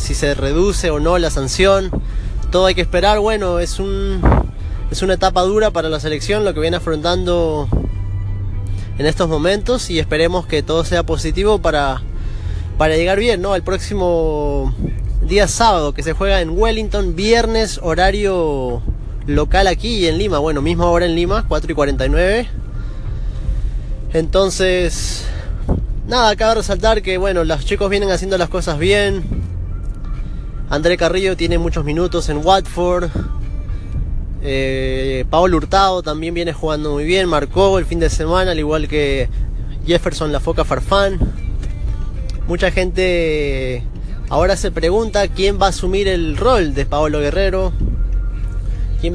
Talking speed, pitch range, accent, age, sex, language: 145 wpm, 135-190 Hz, Argentinian, 20-39, male, English